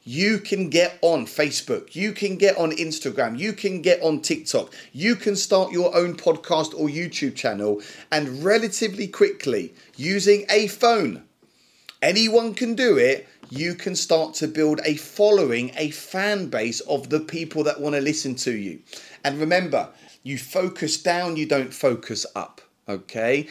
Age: 30-49